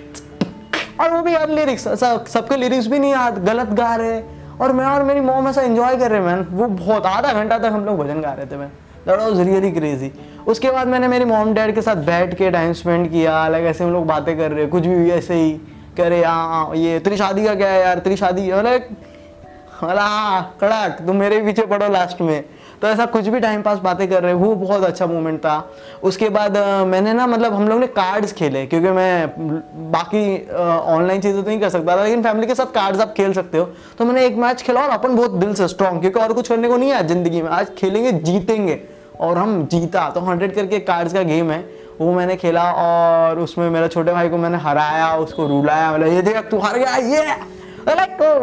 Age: 20-39